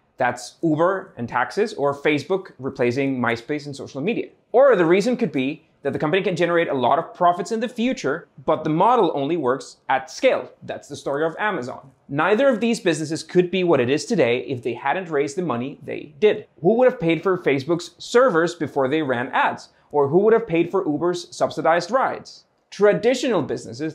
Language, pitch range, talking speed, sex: English, 140-200 Hz, 200 wpm, male